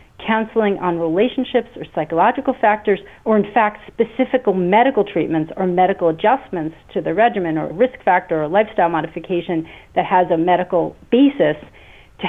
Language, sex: English, female